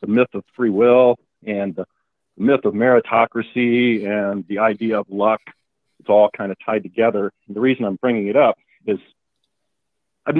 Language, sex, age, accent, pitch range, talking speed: English, male, 40-59, American, 110-140 Hz, 165 wpm